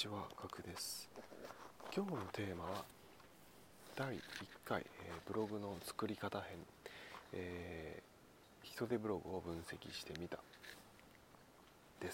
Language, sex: Japanese, male